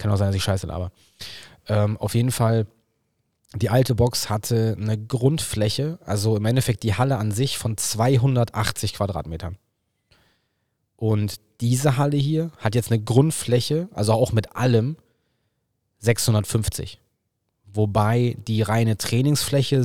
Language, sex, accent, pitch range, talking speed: German, male, German, 105-120 Hz, 135 wpm